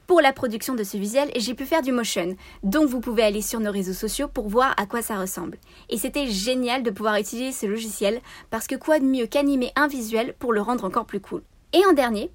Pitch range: 210-265 Hz